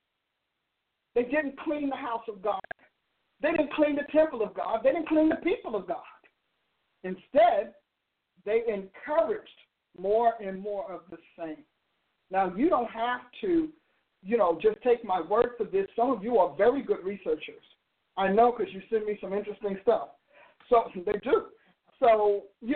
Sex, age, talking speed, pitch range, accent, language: male, 50-69, 170 wpm, 215-285 Hz, American, English